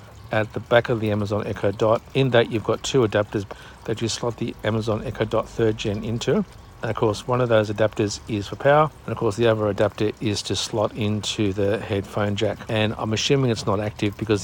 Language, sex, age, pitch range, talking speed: English, male, 60-79, 100-115 Hz, 225 wpm